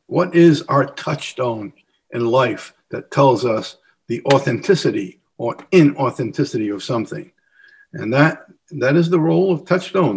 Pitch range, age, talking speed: 135-180 Hz, 60-79, 135 wpm